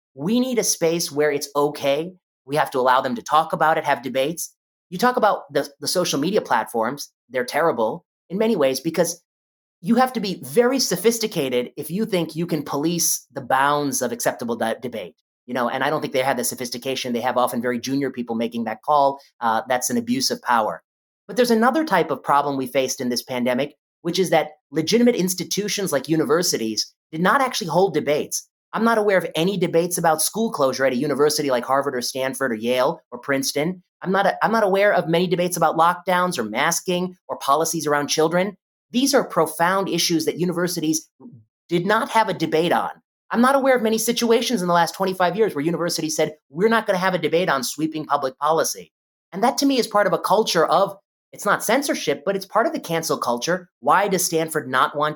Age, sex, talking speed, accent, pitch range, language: 30-49, male, 215 wpm, American, 140-195 Hz, English